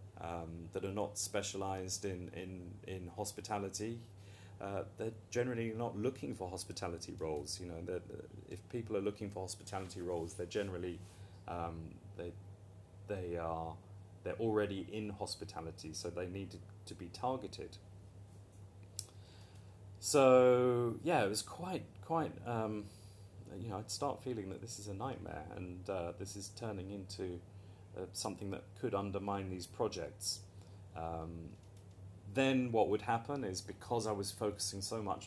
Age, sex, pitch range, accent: 30-49, male, 95-105 Hz, British